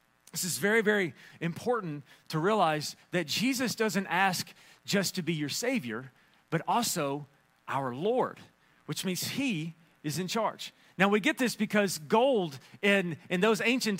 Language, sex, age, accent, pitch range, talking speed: English, male, 40-59, American, 175-225 Hz, 155 wpm